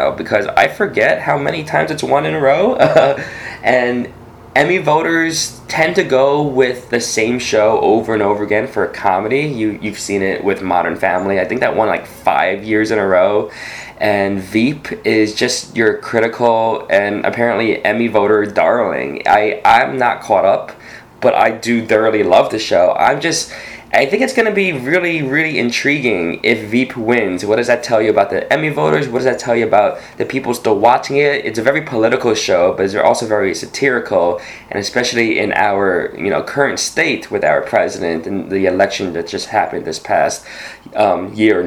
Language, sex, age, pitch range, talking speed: English, male, 20-39, 105-130 Hz, 190 wpm